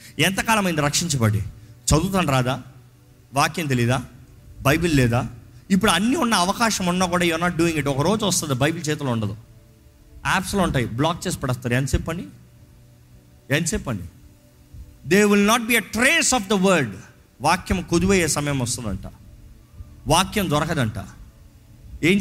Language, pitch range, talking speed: Telugu, 125-195 Hz, 130 wpm